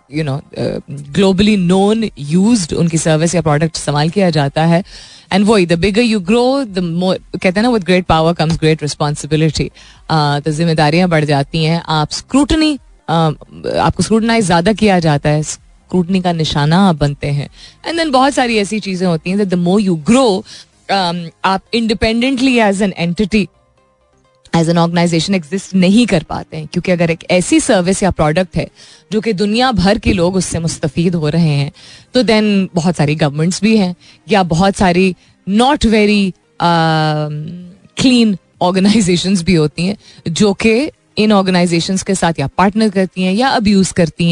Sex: female